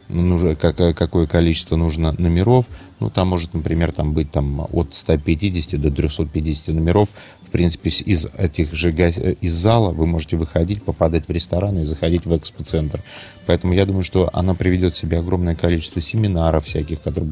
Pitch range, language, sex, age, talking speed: 80-90 Hz, Russian, male, 30-49, 165 wpm